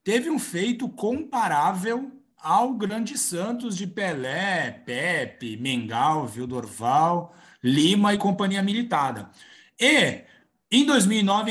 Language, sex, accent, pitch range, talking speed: Portuguese, male, Brazilian, 135-195 Hz, 100 wpm